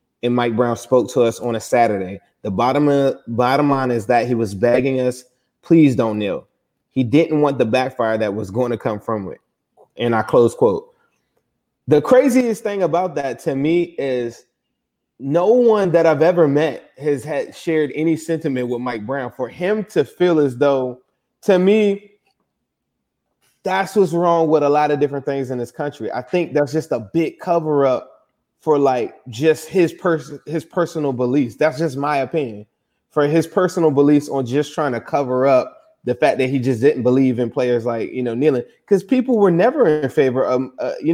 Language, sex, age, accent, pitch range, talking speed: English, male, 20-39, American, 130-175 Hz, 195 wpm